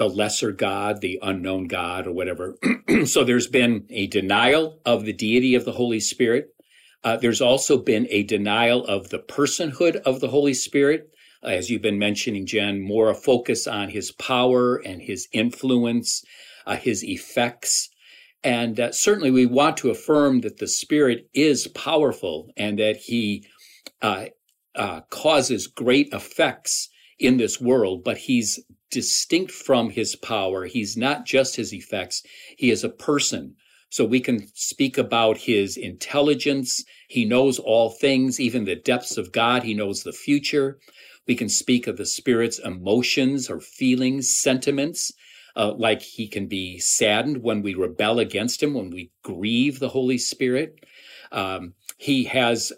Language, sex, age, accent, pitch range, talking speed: English, male, 50-69, American, 110-140 Hz, 155 wpm